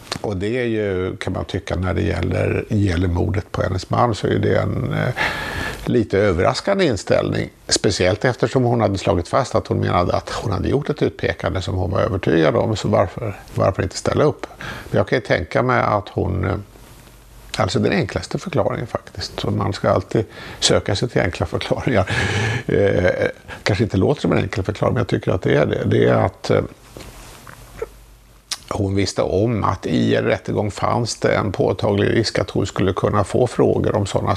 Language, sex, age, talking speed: Swedish, male, 50-69, 195 wpm